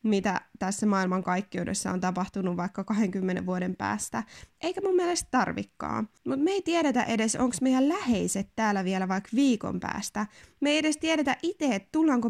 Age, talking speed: 20-39, 165 wpm